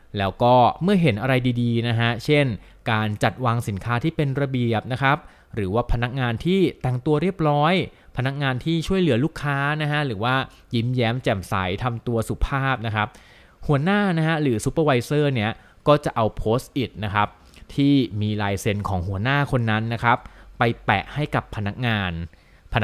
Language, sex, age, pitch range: Thai, male, 20-39, 105-135 Hz